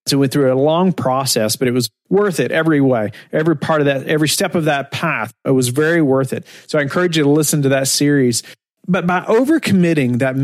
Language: English